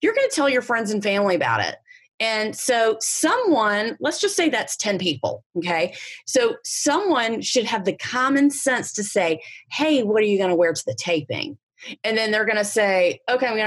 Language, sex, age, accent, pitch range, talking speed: English, female, 30-49, American, 180-245 Hz, 210 wpm